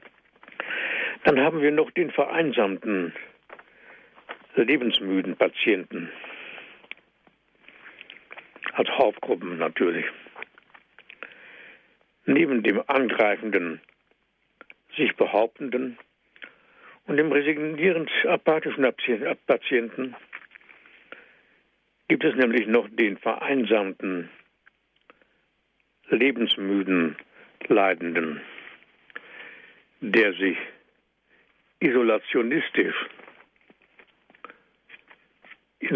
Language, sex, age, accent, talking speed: German, male, 60-79, German, 55 wpm